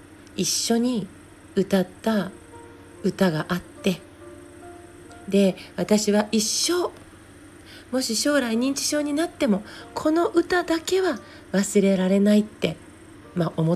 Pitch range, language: 175-230 Hz, Japanese